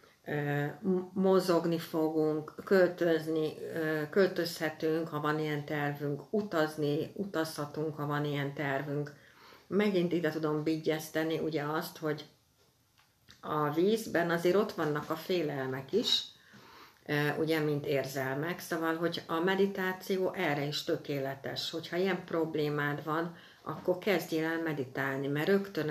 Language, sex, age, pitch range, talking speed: Hungarian, female, 60-79, 145-170 Hz, 115 wpm